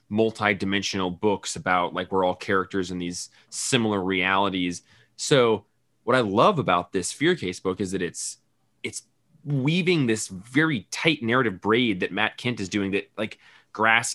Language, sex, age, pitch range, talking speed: English, male, 20-39, 100-125 Hz, 160 wpm